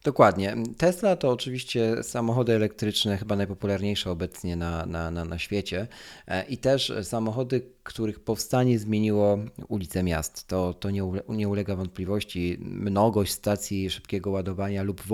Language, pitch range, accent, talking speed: Polish, 95-110 Hz, native, 130 wpm